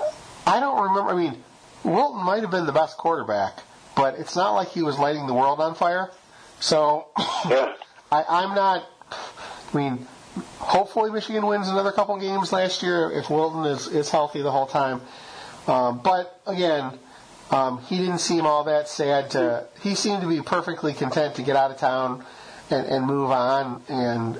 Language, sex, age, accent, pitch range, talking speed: English, male, 40-59, American, 130-175 Hz, 170 wpm